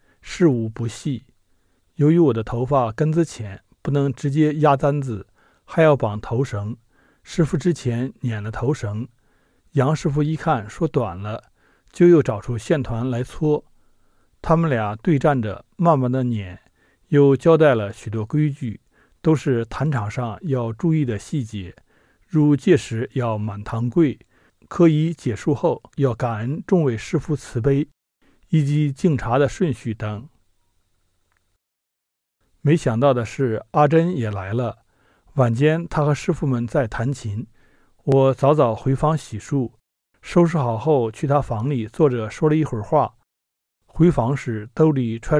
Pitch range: 110-150 Hz